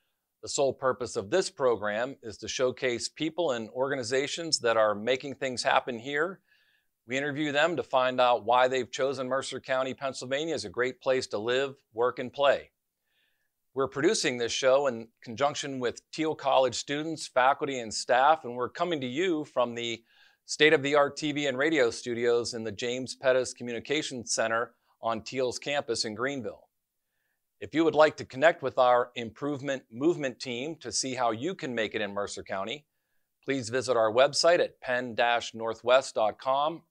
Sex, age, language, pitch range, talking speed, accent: male, 40-59, English, 120-140 Hz, 170 wpm, American